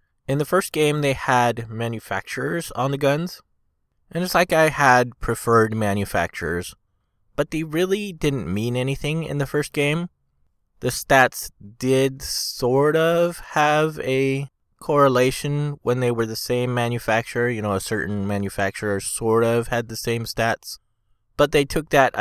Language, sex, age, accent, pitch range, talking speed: English, male, 20-39, American, 105-135 Hz, 150 wpm